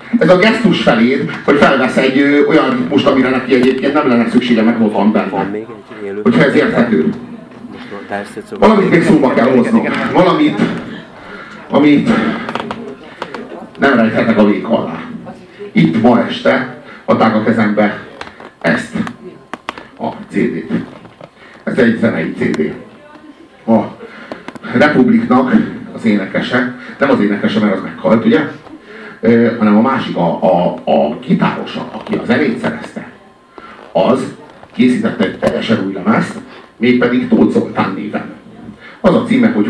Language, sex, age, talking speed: Hungarian, male, 50-69, 125 wpm